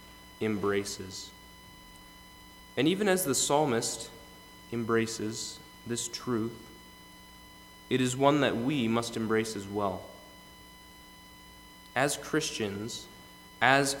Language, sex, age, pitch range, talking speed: English, male, 20-39, 100-130 Hz, 90 wpm